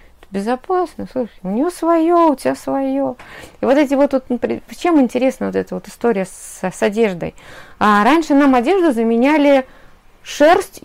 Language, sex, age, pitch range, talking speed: Russian, female, 30-49, 185-275 Hz, 155 wpm